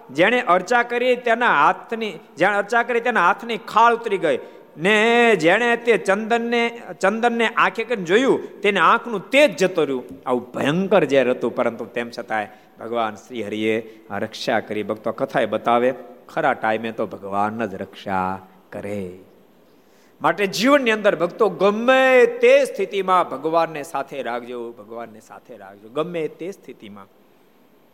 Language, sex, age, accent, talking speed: Gujarati, male, 50-69, native, 95 wpm